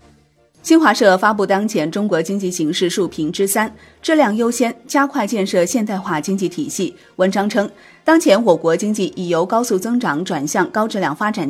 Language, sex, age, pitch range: Chinese, female, 30-49, 175-240 Hz